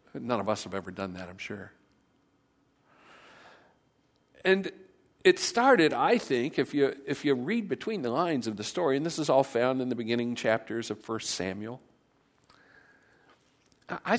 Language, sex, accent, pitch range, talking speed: English, male, American, 125-170 Hz, 160 wpm